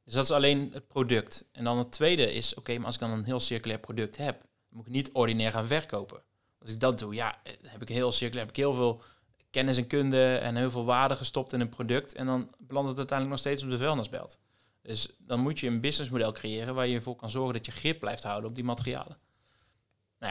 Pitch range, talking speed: 115-130 Hz, 245 wpm